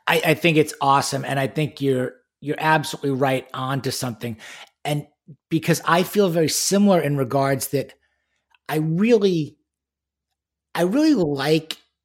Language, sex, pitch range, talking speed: English, male, 140-165 Hz, 140 wpm